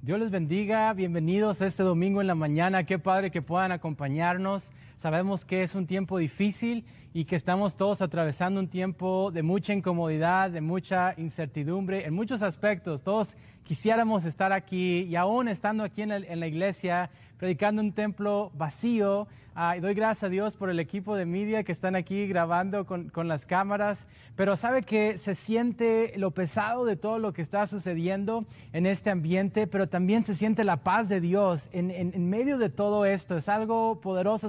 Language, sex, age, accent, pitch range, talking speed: Spanish, male, 30-49, Mexican, 180-210 Hz, 185 wpm